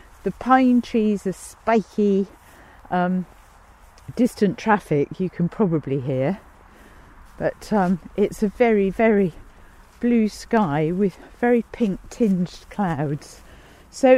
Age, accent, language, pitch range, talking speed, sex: 50-69, British, English, 175-240 Hz, 110 wpm, female